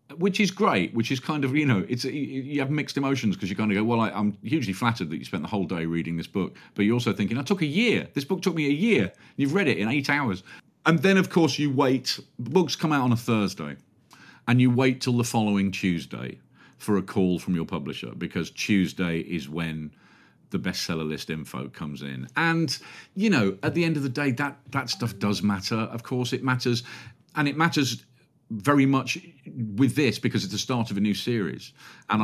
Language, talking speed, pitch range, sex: English, 230 wpm, 105-140 Hz, male